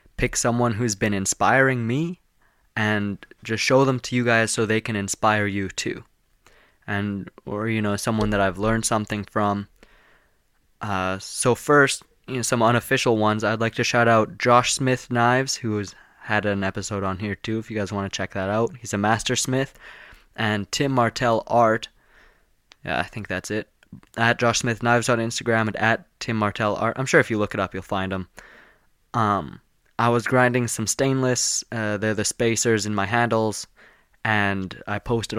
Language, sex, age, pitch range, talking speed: English, male, 20-39, 105-120 Hz, 185 wpm